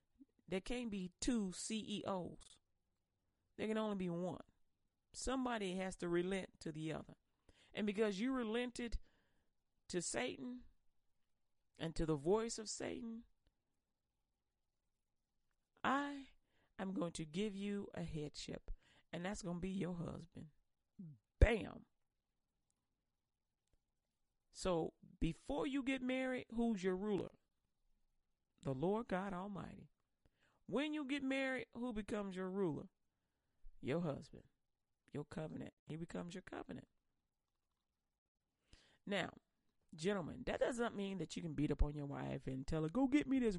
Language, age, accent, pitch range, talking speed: English, 40-59, American, 165-240 Hz, 130 wpm